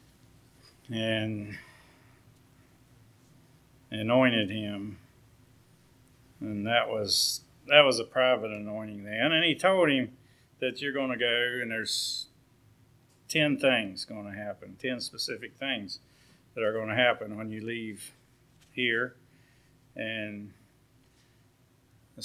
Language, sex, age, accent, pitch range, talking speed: English, male, 50-69, American, 110-130 Hz, 115 wpm